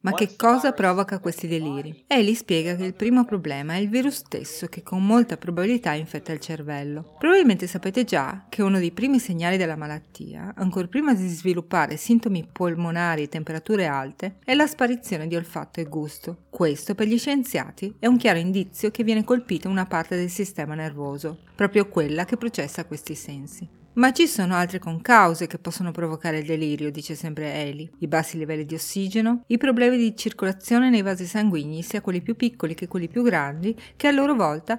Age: 30-49